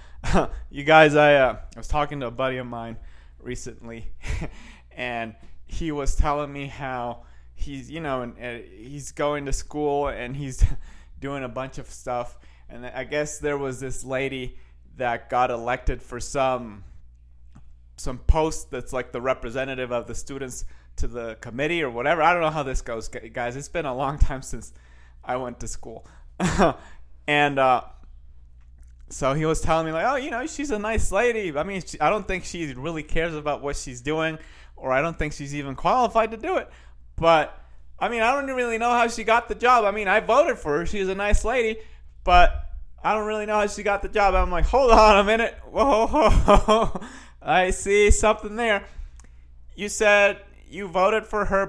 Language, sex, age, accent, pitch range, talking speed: English, male, 30-49, American, 115-190 Hz, 195 wpm